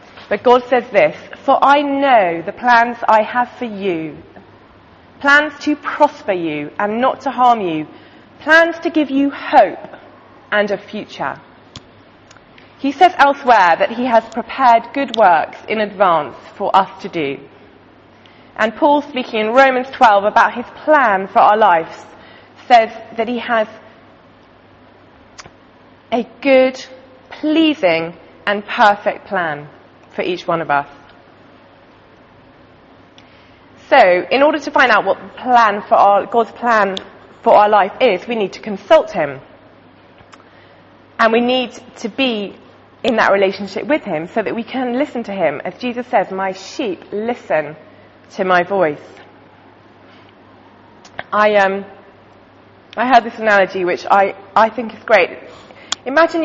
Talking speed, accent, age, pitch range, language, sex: 140 wpm, British, 30-49, 195-265 Hz, English, female